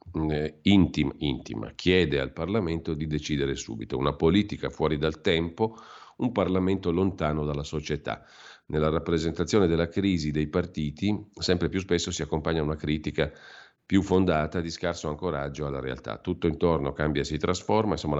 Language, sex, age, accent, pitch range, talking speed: Italian, male, 50-69, native, 75-90 Hz, 145 wpm